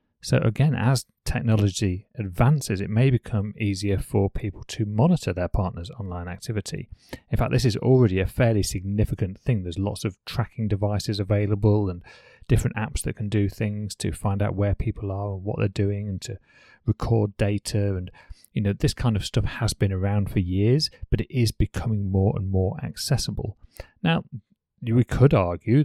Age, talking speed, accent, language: 30-49, 180 wpm, British, English